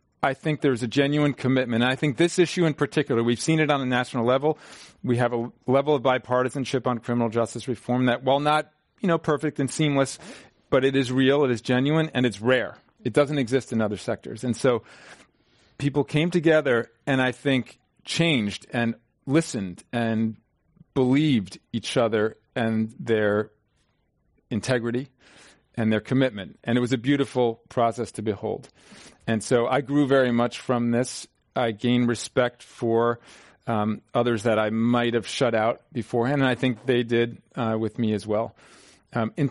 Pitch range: 115-135 Hz